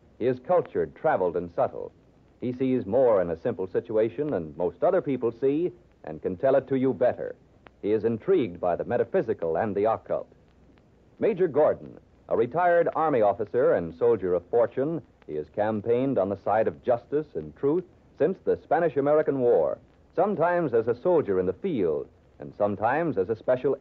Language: English